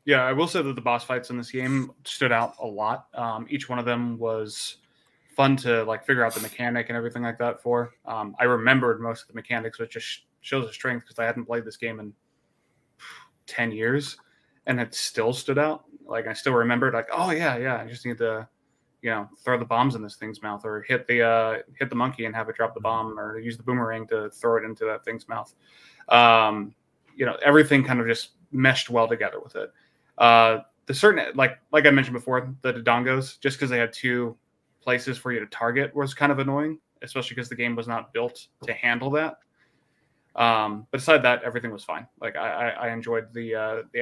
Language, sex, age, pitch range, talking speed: English, male, 20-39, 115-130 Hz, 225 wpm